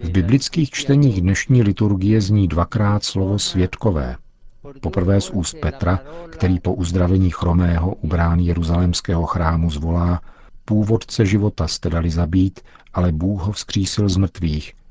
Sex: male